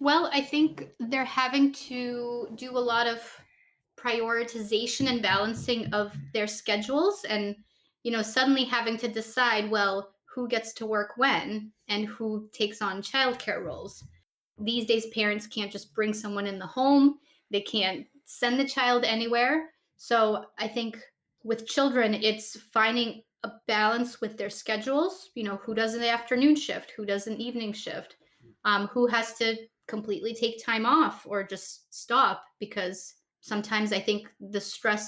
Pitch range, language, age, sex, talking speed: 210-245 Hz, English, 20-39, female, 155 wpm